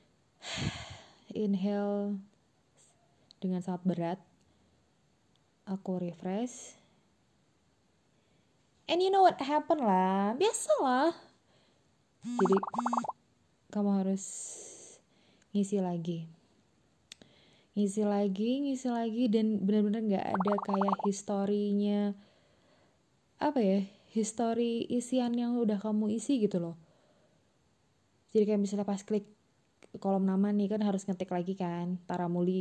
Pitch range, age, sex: 190-230 Hz, 20-39, female